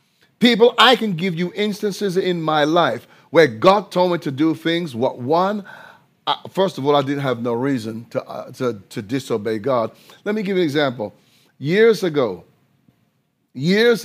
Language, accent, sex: English, American, male